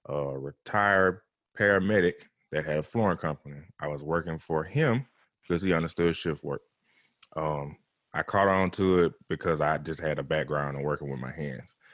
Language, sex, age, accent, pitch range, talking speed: English, male, 20-39, American, 75-90 Hz, 175 wpm